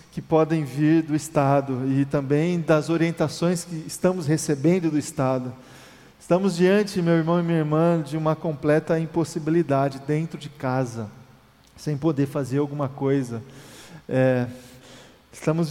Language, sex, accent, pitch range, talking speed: Portuguese, male, Brazilian, 135-160 Hz, 135 wpm